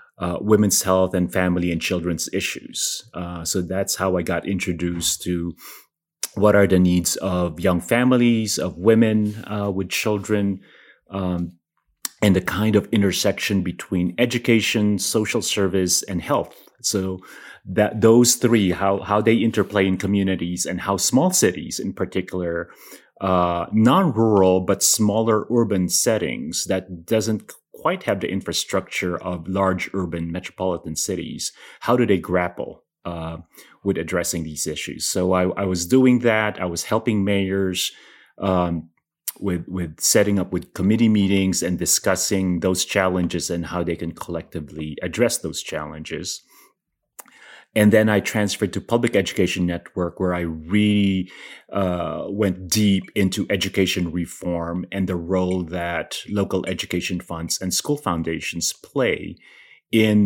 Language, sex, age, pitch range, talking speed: English, male, 30-49, 90-105 Hz, 140 wpm